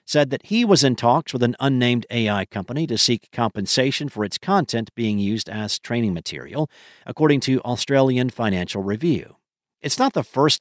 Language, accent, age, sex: English, American, 50-69, male